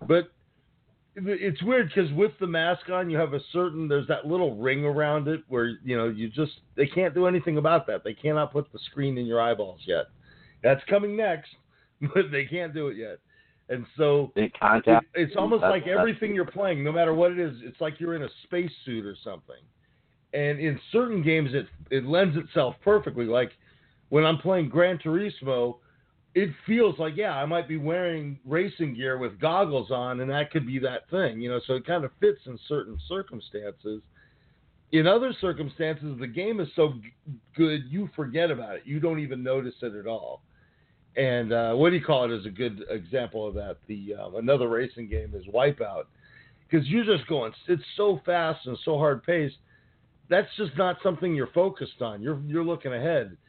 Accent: American